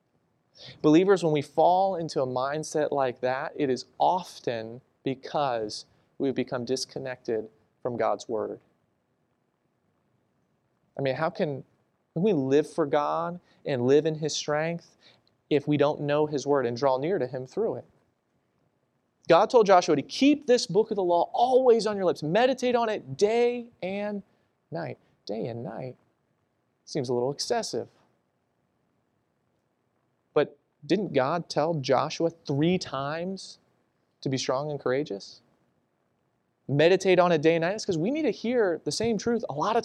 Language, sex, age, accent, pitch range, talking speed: English, male, 30-49, American, 135-200 Hz, 150 wpm